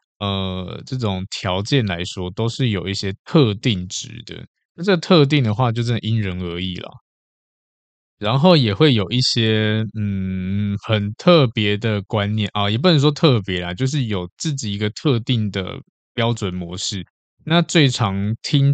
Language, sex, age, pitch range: Chinese, male, 20-39, 100-130 Hz